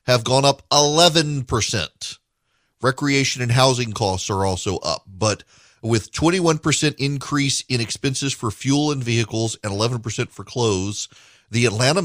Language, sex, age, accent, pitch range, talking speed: English, male, 40-59, American, 105-130 Hz, 135 wpm